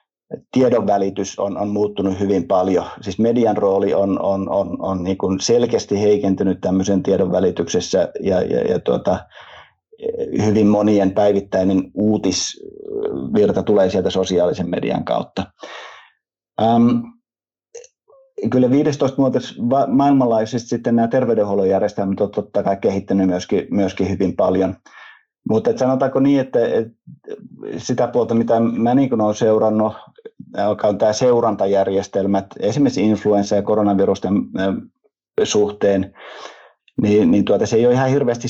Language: Finnish